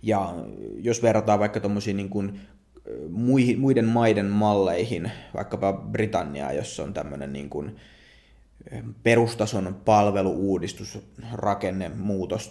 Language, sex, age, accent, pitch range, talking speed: Finnish, male, 30-49, native, 95-115 Hz, 85 wpm